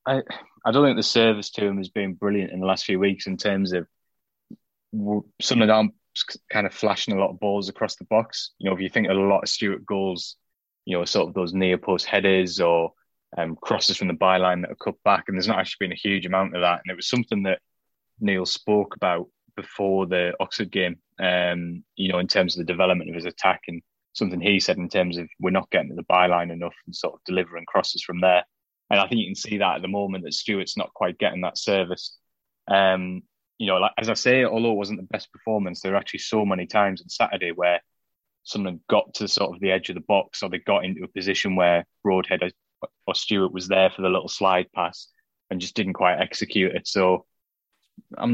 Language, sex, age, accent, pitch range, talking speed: English, male, 20-39, British, 90-100 Hz, 235 wpm